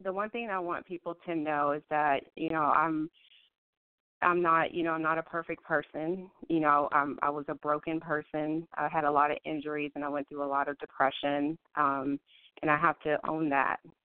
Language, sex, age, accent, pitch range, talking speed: English, female, 30-49, American, 145-160 Hz, 220 wpm